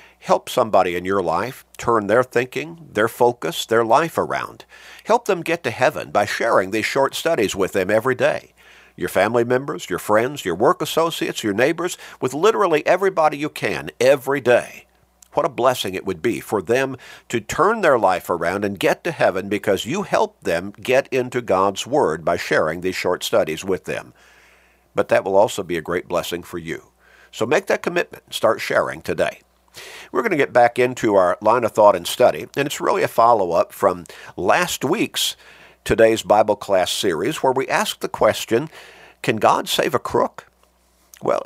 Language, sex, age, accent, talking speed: English, male, 50-69, American, 185 wpm